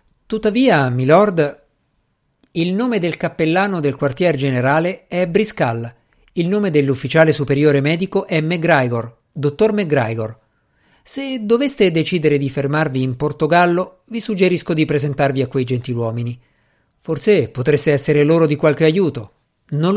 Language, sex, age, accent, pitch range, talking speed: Italian, male, 50-69, native, 130-190 Hz, 125 wpm